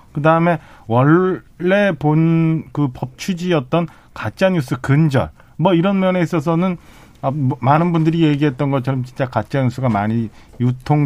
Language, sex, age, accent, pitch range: Korean, male, 40-59, native, 115-155 Hz